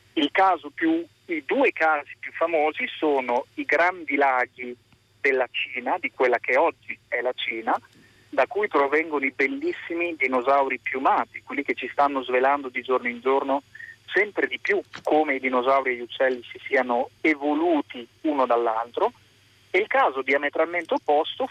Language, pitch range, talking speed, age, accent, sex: Italian, 125-170 Hz, 155 wpm, 40-59, native, male